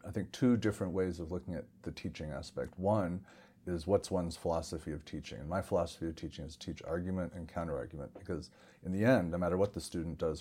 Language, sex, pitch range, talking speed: English, male, 80-95 Hz, 225 wpm